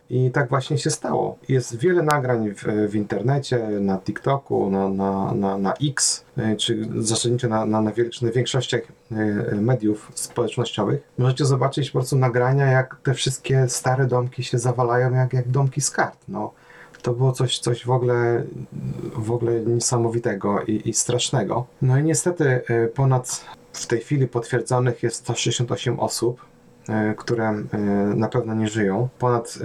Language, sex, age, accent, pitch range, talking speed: Polish, male, 30-49, native, 110-130 Hz, 140 wpm